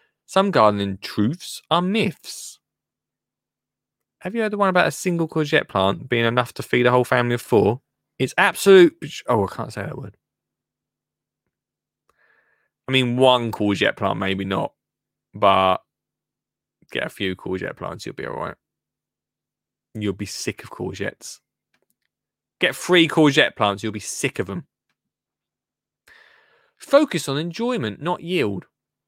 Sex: male